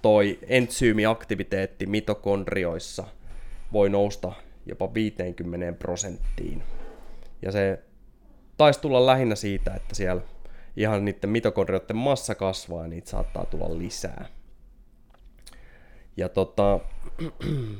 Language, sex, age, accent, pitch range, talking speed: Finnish, male, 20-39, native, 90-110 Hz, 100 wpm